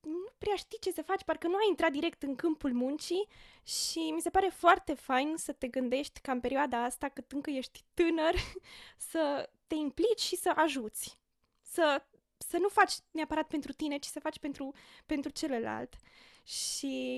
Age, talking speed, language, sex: 20-39, 180 wpm, Romanian, female